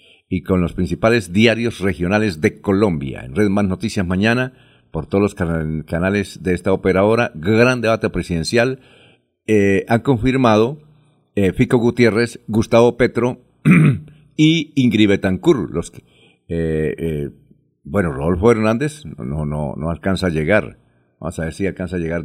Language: Spanish